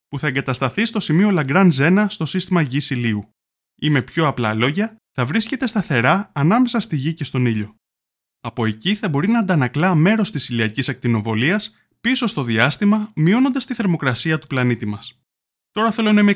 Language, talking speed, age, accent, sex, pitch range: Greek, 175 wpm, 20-39, native, male, 120-200 Hz